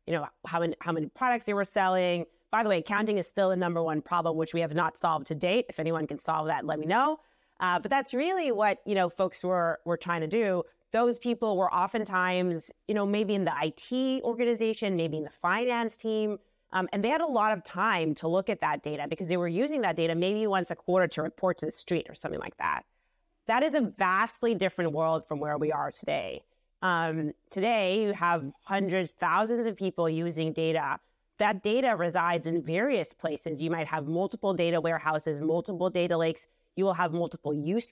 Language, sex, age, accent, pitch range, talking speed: English, female, 30-49, American, 165-215 Hz, 215 wpm